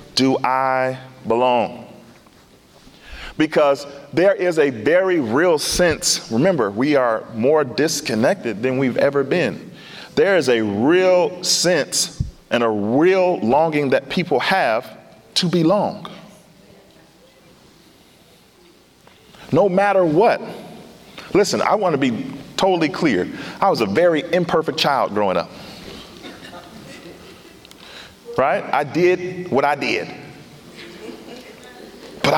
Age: 40-59